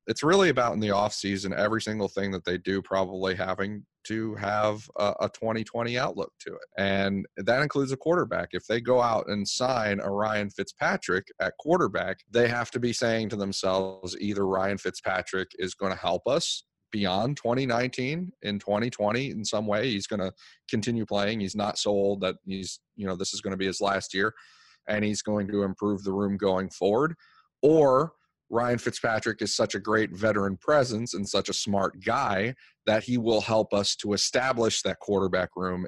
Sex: male